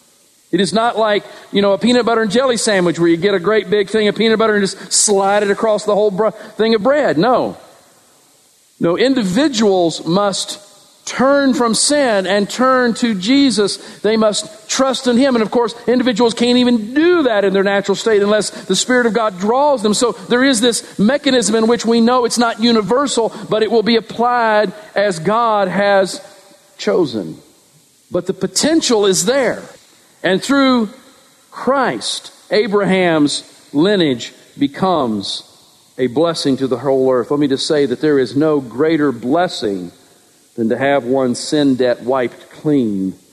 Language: English